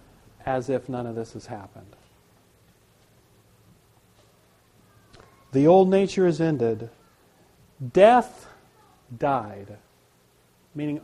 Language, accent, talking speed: English, American, 80 wpm